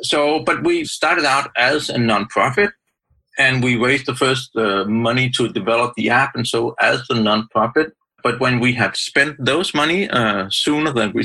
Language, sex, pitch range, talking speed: English, male, 115-150 Hz, 185 wpm